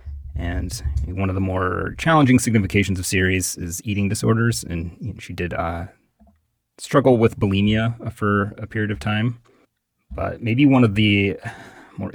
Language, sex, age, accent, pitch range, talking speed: English, male, 30-49, American, 90-115 Hz, 150 wpm